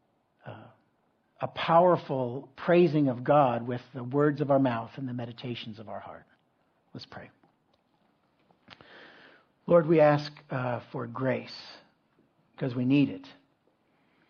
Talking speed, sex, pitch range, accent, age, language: 120 wpm, male, 125-145 Hz, American, 60-79, English